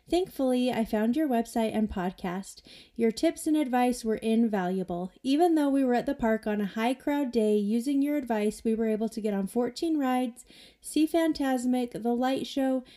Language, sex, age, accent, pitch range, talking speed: English, female, 30-49, American, 220-265 Hz, 190 wpm